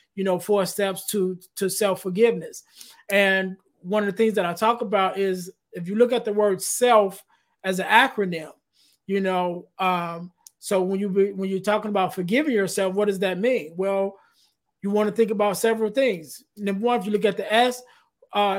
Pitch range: 195-225 Hz